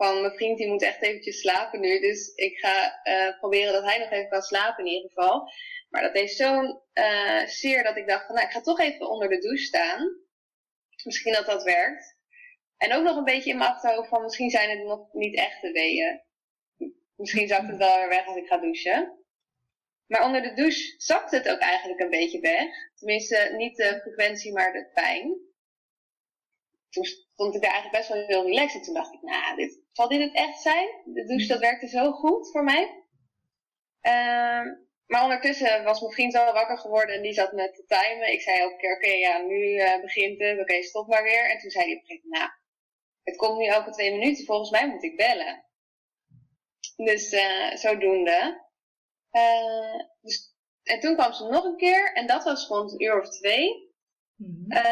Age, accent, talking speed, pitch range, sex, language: 20-39, Dutch, 205 wpm, 205-335 Hz, female, Dutch